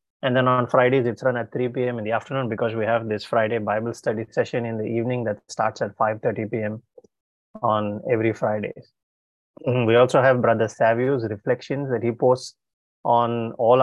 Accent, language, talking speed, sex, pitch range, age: Indian, English, 180 wpm, male, 115-130 Hz, 20-39